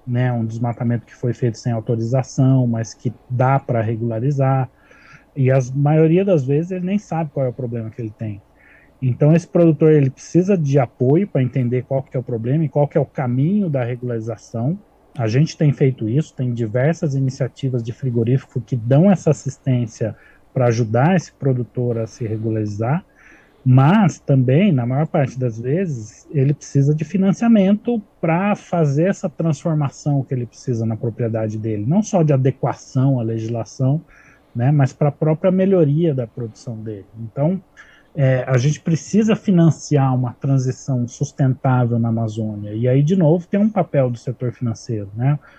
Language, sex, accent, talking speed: Portuguese, male, Brazilian, 170 wpm